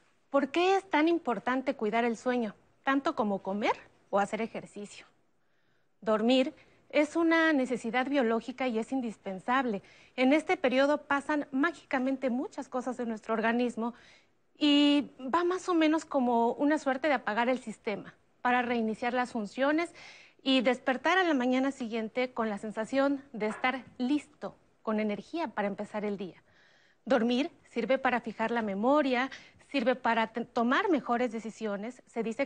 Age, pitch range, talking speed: 30-49, 225-275 Hz, 150 wpm